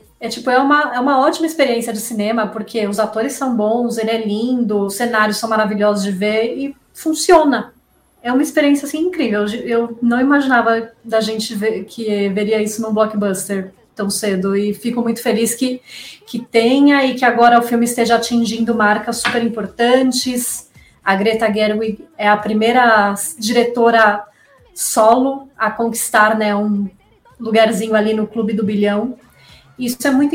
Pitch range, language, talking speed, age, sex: 210-250 Hz, Portuguese, 150 wpm, 20-39, female